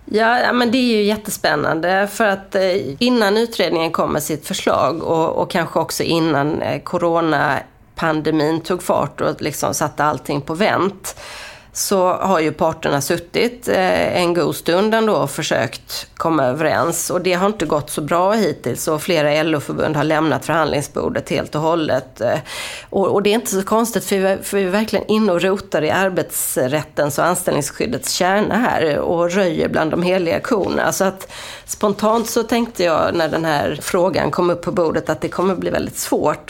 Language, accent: Swedish, native